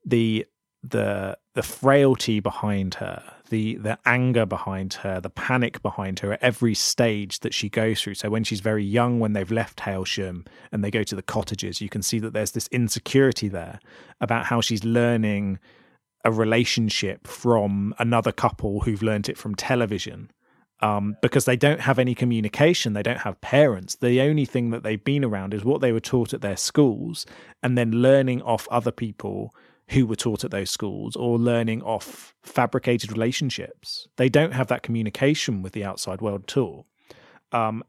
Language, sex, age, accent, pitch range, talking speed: English, male, 30-49, British, 105-125 Hz, 180 wpm